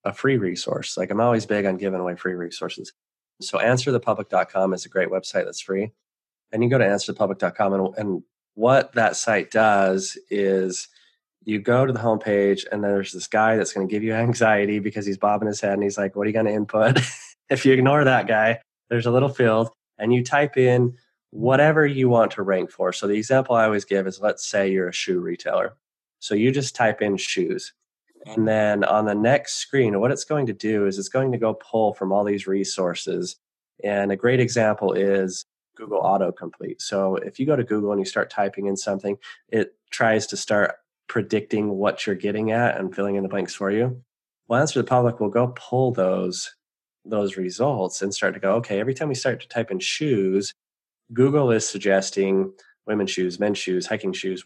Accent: American